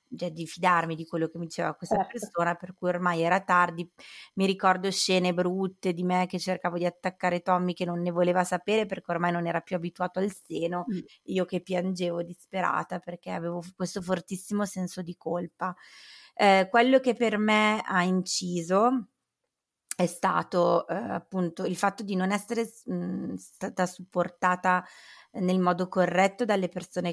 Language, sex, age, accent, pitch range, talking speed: Italian, female, 20-39, native, 175-195 Hz, 165 wpm